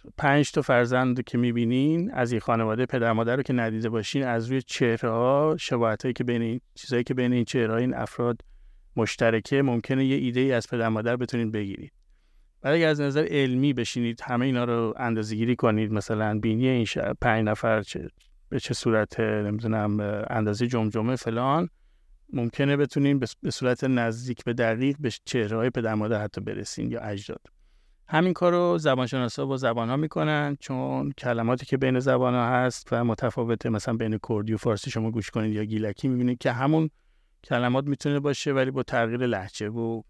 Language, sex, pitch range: Persian, male, 110-130 Hz